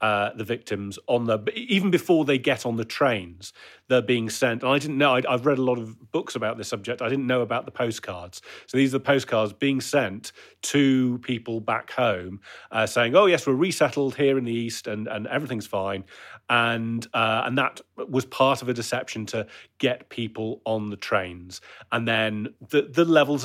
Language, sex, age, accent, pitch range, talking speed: English, male, 40-59, British, 100-130 Hz, 220 wpm